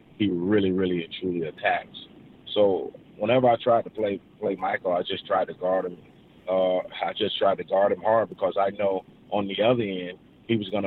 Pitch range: 90-105 Hz